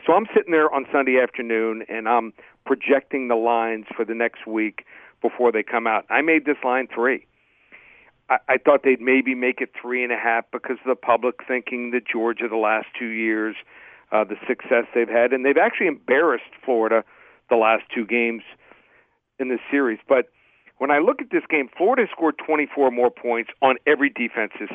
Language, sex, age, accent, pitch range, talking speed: English, male, 50-69, American, 115-140 Hz, 190 wpm